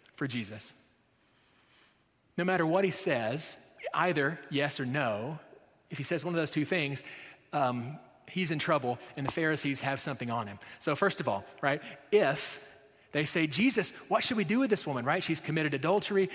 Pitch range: 130-180 Hz